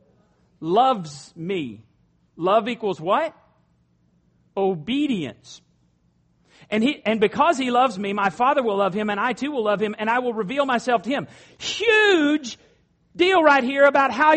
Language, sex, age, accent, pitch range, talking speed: English, male, 40-59, American, 220-290 Hz, 155 wpm